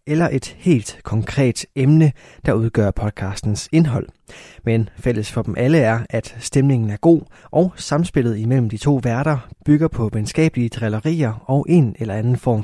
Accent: native